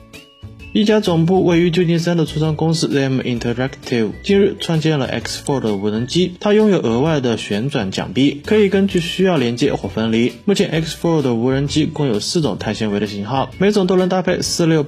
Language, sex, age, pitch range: Chinese, male, 20-39, 120-175 Hz